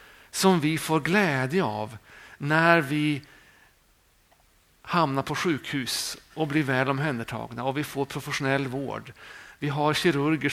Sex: male